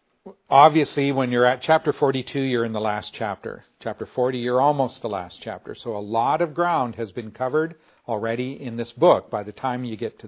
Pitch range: 115-155 Hz